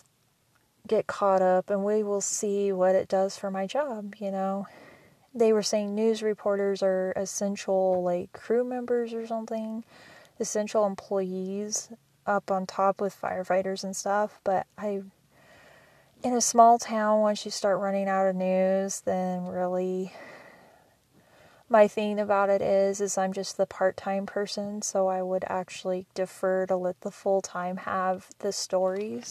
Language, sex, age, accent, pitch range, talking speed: English, female, 30-49, American, 185-210 Hz, 150 wpm